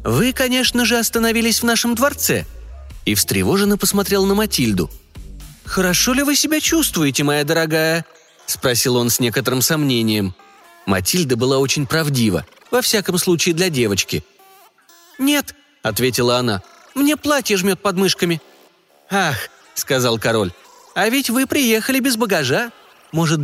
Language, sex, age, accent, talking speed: Russian, male, 30-49, native, 130 wpm